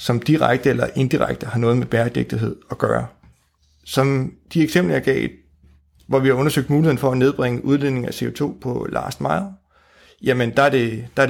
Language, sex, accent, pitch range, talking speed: Danish, male, native, 115-140 Hz, 180 wpm